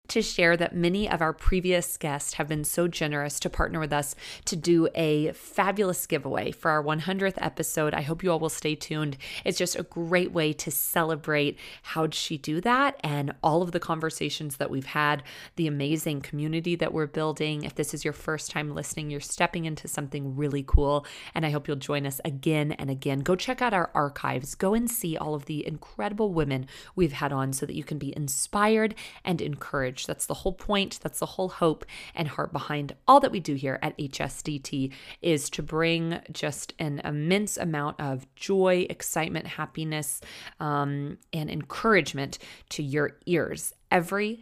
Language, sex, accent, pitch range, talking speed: English, female, American, 145-175 Hz, 190 wpm